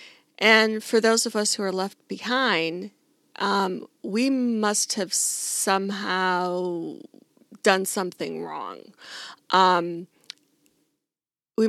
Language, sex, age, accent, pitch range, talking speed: English, female, 40-59, American, 185-225 Hz, 100 wpm